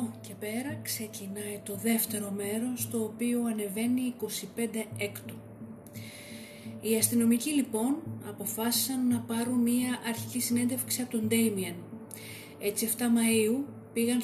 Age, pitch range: 30-49, 195-250 Hz